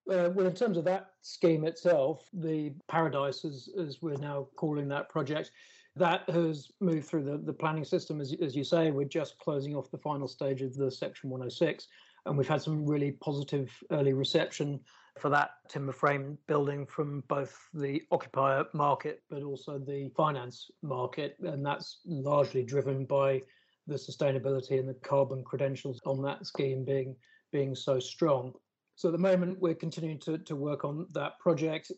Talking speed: 175 wpm